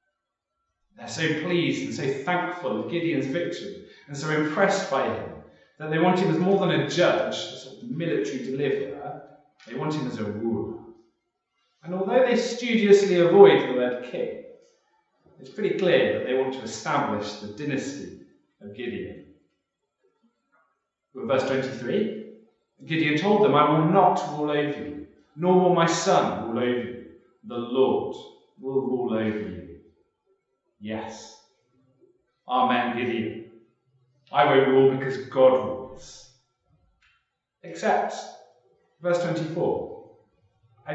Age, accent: 40-59, British